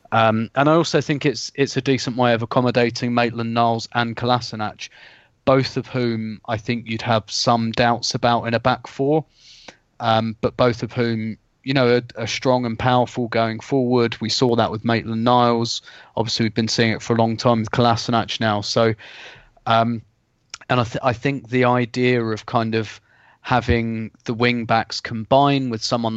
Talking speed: 185 wpm